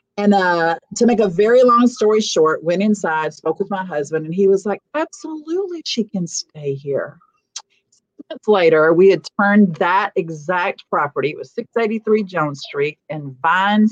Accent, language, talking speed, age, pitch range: American, English, 170 wpm, 40-59, 165-215 Hz